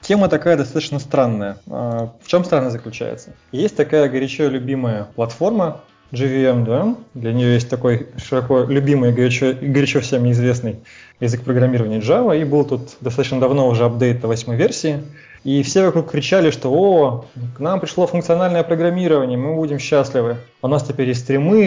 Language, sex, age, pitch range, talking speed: Russian, male, 20-39, 125-150 Hz, 160 wpm